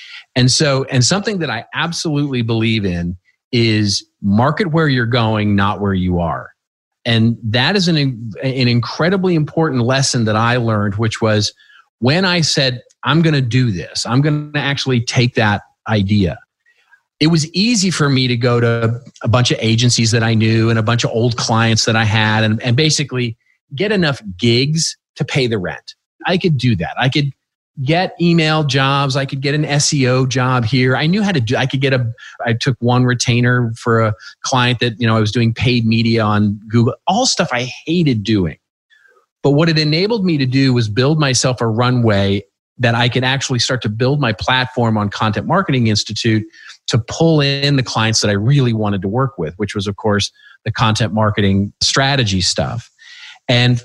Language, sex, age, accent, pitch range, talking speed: English, male, 40-59, American, 110-140 Hz, 195 wpm